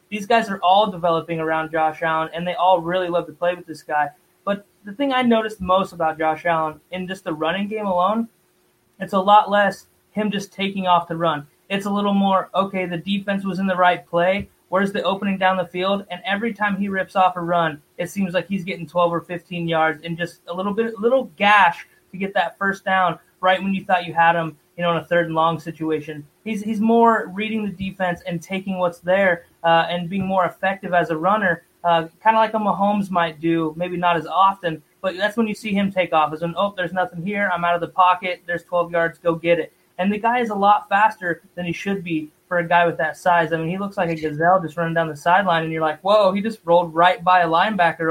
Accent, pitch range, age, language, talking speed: American, 170-195 Hz, 20-39, English, 250 wpm